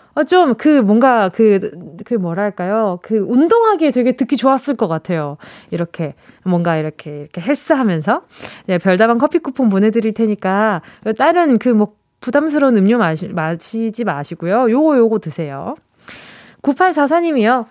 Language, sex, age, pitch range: Korean, female, 20-39, 195-285 Hz